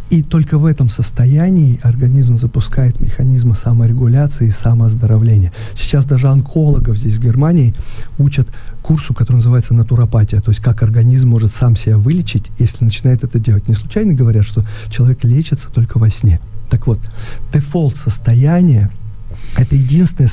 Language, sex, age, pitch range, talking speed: Russian, male, 40-59, 110-140 Hz, 140 wpm